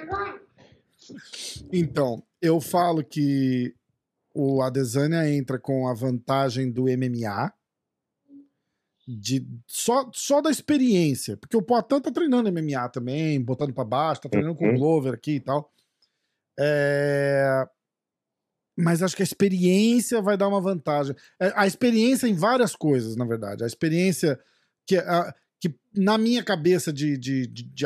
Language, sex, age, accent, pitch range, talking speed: Portuguese, male, 40-59, Brazilian, 135-180 Hz, 140 wpm